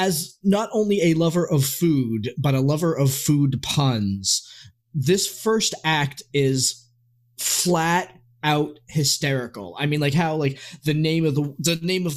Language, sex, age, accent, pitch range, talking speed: English, male, 20-39, American, 145-200 Hz, 160 wpm